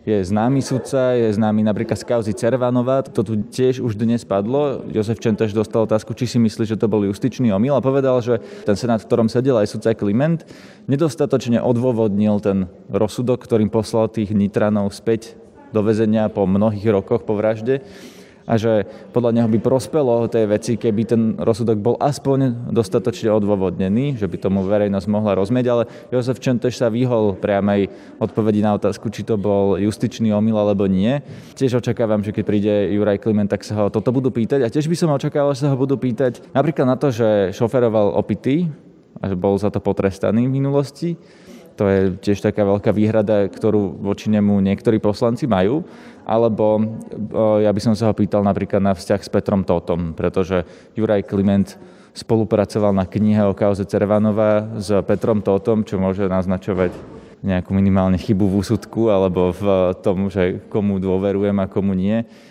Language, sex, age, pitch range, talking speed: Slovak, male, 20-39, 100-120 Hz, 175 wpm